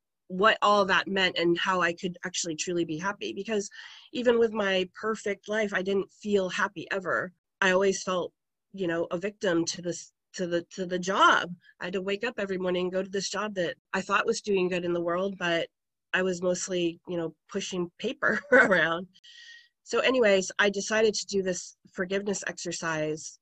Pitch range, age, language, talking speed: 175-205 Hz, 30-49, English, 195 wpm